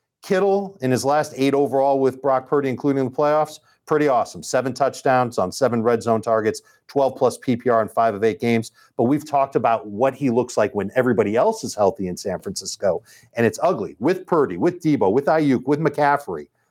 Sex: male